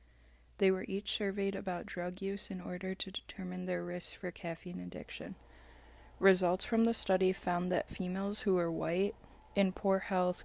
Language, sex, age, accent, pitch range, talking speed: English, female, 20-39, American, 180-200 Hz, 165 wpm